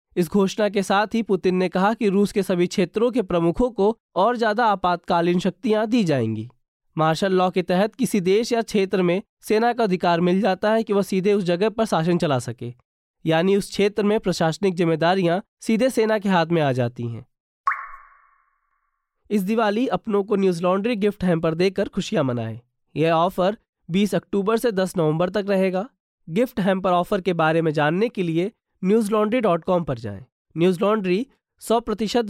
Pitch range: 165-210 Hz